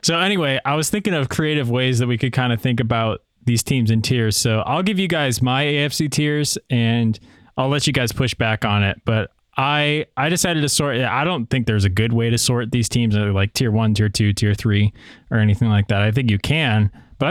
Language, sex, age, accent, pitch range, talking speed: English, male, 20-39, American, 105-130 Hz, 245 wpm